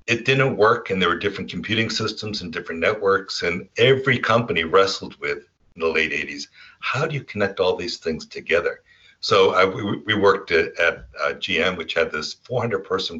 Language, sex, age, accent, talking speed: English, male, 60-79, American, 190 wpm